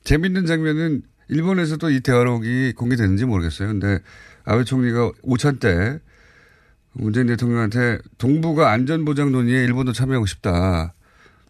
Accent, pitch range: native, 100-150 Hz